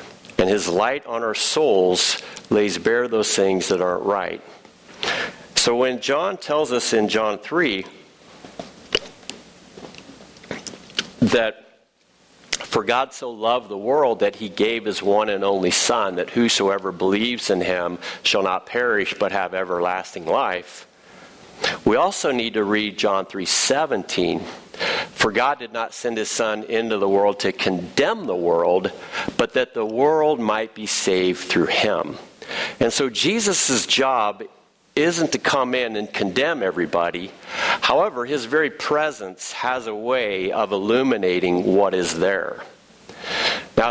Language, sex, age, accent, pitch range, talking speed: English, male, 50-69, American, 100-125 Hz, 140 wpm